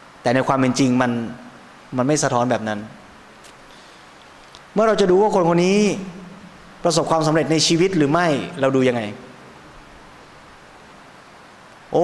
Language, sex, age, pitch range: Thai, male, 20-39, 130-170 Hz